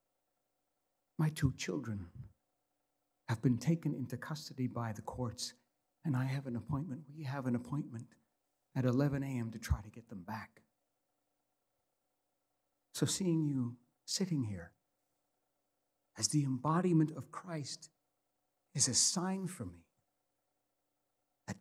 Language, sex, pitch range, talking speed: English, male, 115-145 Hz, 125 wpm